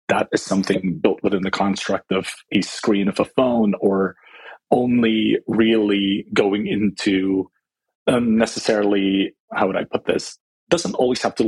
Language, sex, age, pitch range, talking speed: English, male, 30-49, 100-115 Hz, 150 wpm